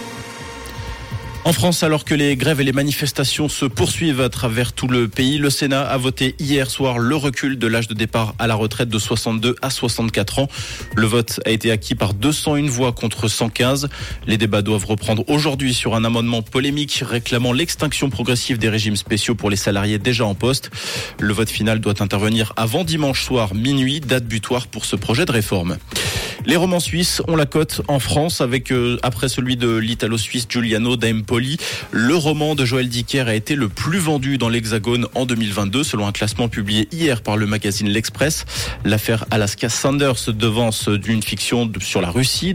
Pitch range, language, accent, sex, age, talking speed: 110-135 Hz, French, French, male, 20-39, 185 wpm